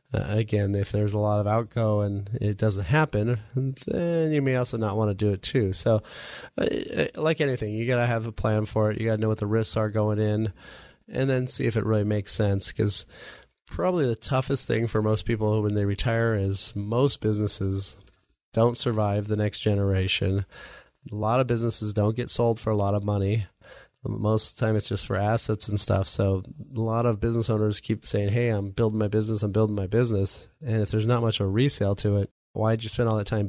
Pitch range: 105-120 Hz